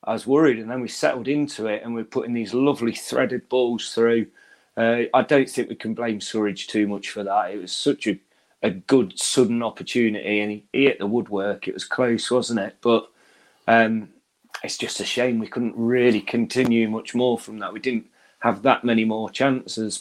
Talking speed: 205 wpm